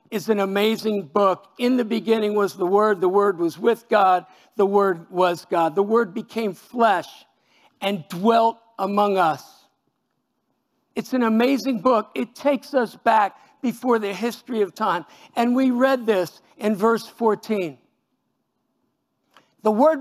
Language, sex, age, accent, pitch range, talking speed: English, male, 50-69, American, 210-280 Hz, 145 wpm